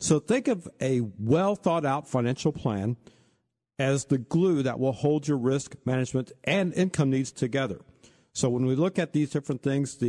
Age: 50-69